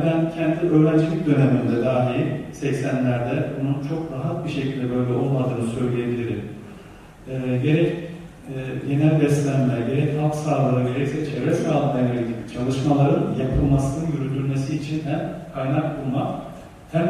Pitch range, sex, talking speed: 130-160 Hz, male, 110 wpm